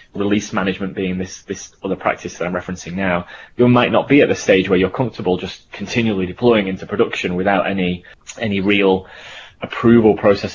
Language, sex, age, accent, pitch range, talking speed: English, male, 20-39, British, 95-110 Hz, 180 wpm